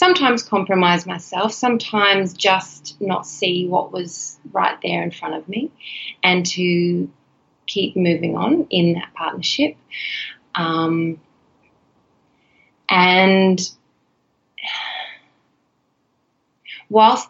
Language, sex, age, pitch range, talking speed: English, female, 20-39, 175-200 Hz, 90 wpm